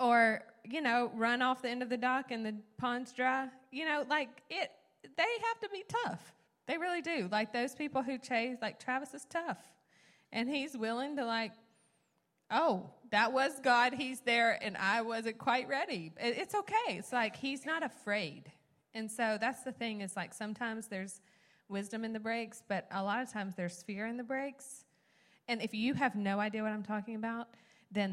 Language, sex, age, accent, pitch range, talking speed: English, female, 20-39, American, 180-245 Hz, 195 wpm